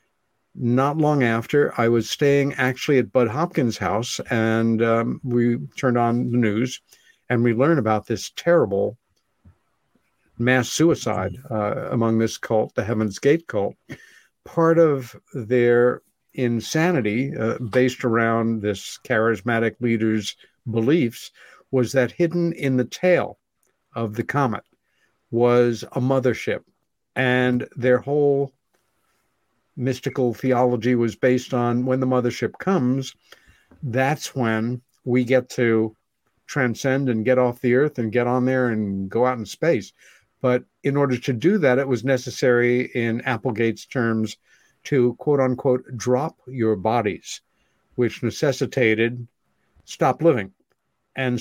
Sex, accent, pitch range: male, American, 115-130 Hz